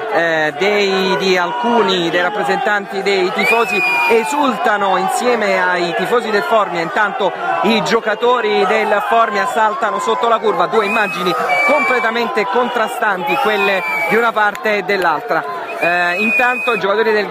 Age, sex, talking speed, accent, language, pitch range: 40-59, male, 125 wpm, native, Italian, 175-215 Hz